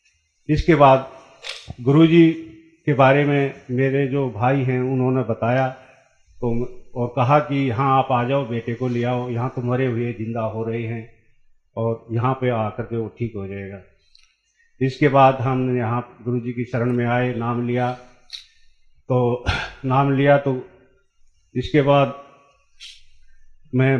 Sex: male